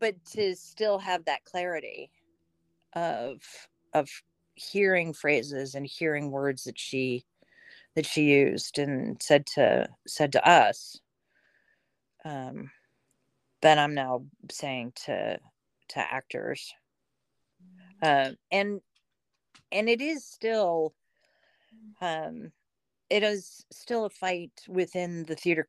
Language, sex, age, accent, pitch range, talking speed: English, female, 40-59, American, 145-180 Hz, 110 wpm